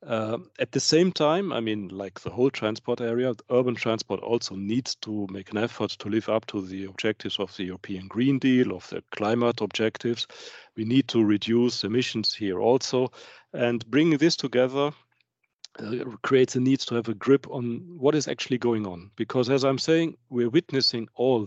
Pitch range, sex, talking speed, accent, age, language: 105-130 Hz, male, 185 wpm, German, 40-59, English